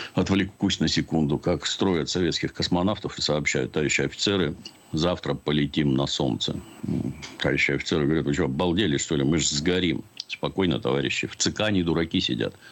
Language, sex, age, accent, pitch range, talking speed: Russian, male, 60-79, native, 80-105 Hz, 160 wpm